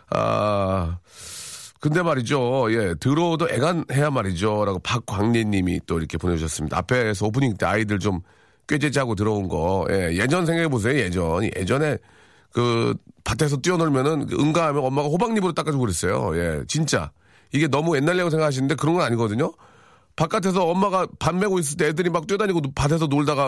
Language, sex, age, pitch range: Korean, male, 40-59, 110-160 Hz